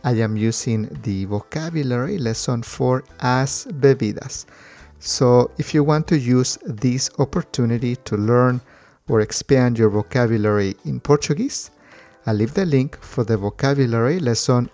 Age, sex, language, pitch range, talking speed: 50-69, male, English, 110-140 Hz, 135 wpm